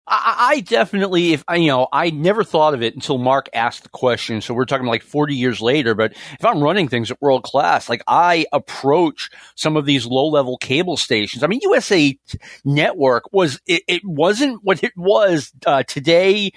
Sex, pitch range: male, 140-200 Hz